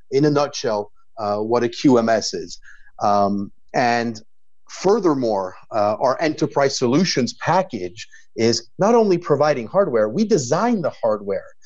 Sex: male